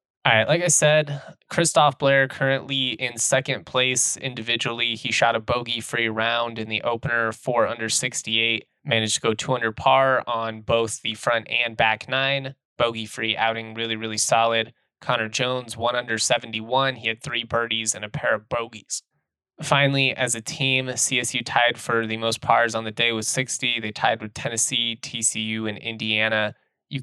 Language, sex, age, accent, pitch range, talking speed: English, male, 20-39, American, 110-130 Hz, 170 wpm